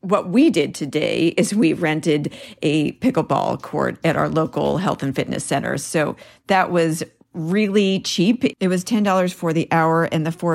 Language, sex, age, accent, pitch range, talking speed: English, female, 40-59, American, 155-190 Hz, 175 wpm